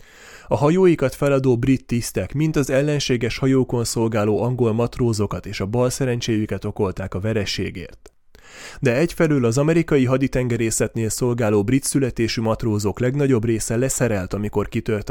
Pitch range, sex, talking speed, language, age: 105-135 Hz, male, 125 wpm, Hungarian, 30-49